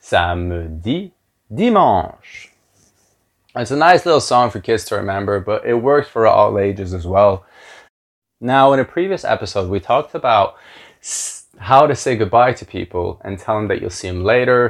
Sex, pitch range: male, 95-110 Hz